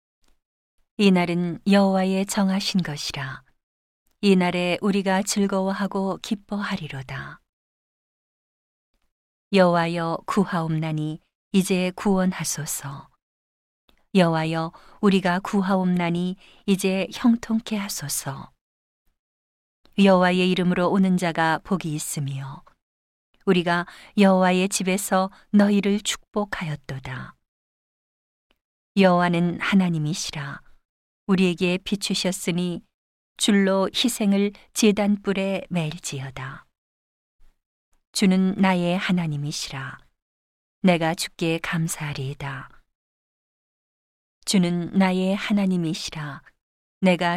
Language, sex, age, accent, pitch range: Korean, female, 40-59, native, 155-195 Hz